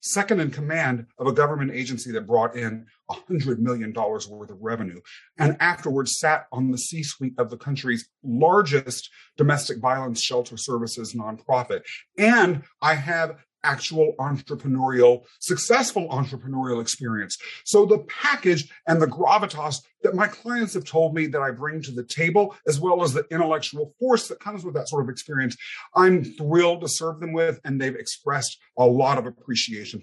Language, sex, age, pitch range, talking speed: English, male, 40-59, 130-185 Hz, 165 wpm